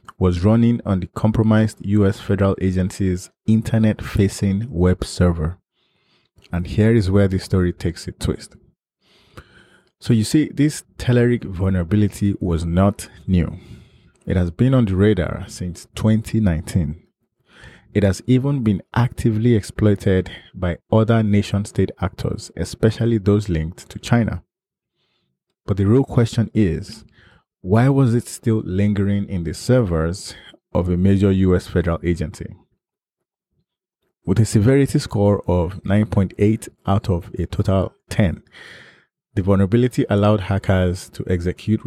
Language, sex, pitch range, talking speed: English, male, 90-110 Hz, 125 wpm